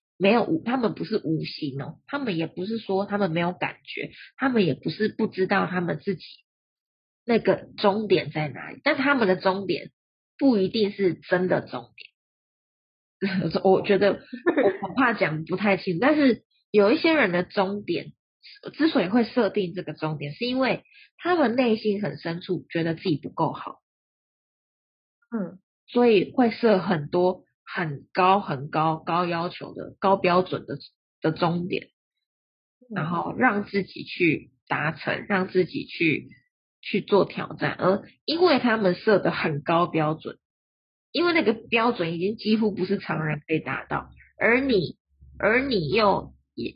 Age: 20-39